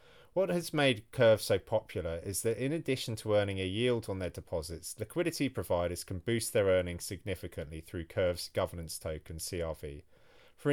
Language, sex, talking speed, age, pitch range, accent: English, male, 170 wpm, 30-49, 90-115 Hz, British